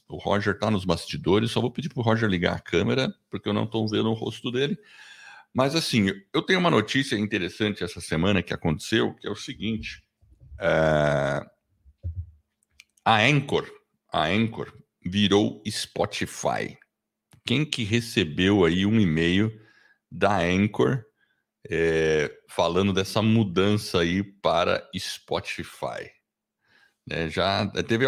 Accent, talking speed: Brazilian, 130 wpm